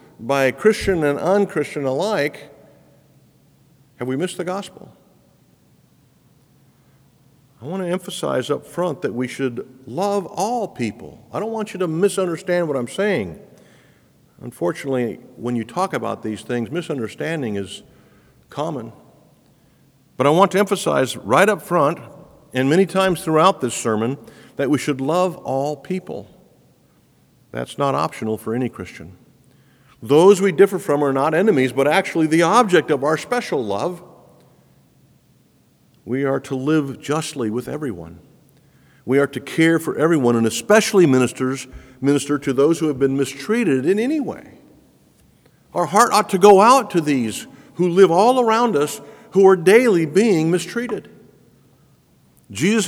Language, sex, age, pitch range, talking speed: English, male, 50-69, 135-195 Hz, 145 wpm